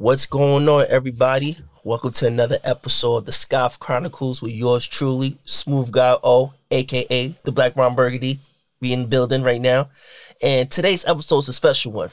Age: 20-39